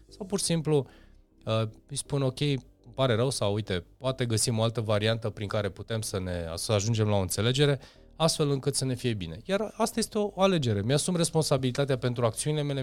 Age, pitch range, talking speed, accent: 20-39, 100-140 Hz, 195 wpm, native